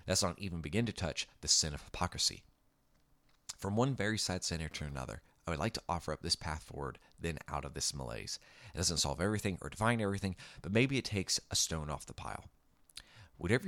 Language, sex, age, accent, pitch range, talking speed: English, male, 30-49, American, 80-105 Hz, 210 wpm